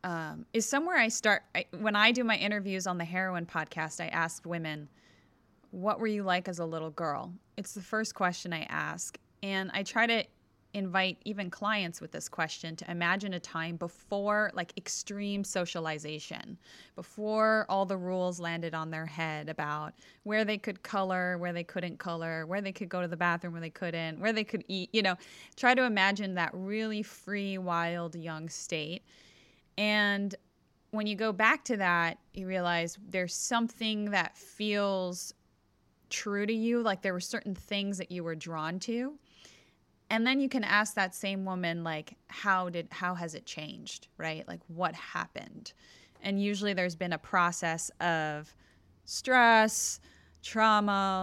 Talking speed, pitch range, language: 170 wpm, 170-210 Hz, English